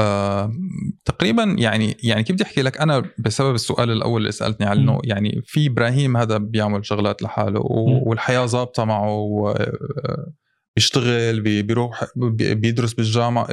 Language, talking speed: Arabic, 125 wpm